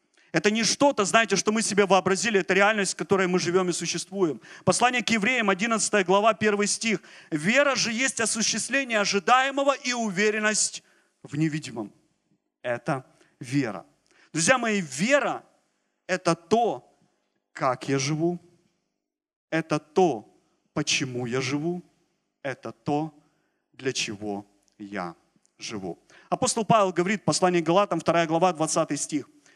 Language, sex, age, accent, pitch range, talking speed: Ukrainian, male, 40-59, native, 145-210 Hz, 130 wpm